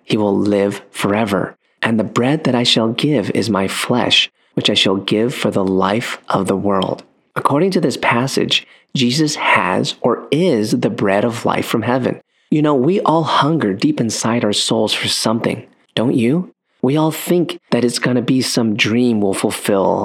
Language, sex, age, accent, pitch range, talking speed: English, male, 30-49, American, 105-130 Hz, 190 wpm